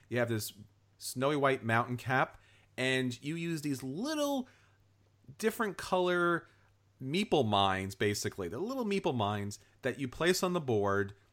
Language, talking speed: English, 145 wpm